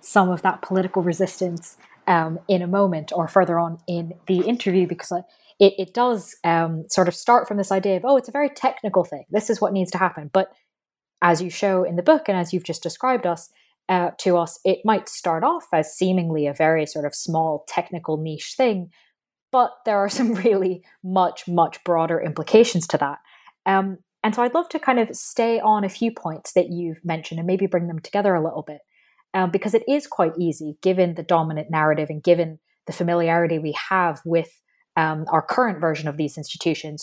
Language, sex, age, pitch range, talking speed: English, female, 20-39, 165-205 Hz, 205 wpm